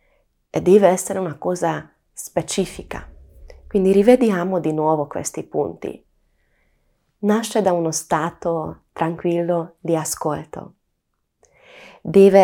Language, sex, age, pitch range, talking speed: Italian, female, 30-49, 160-205 Hz, 95 wpm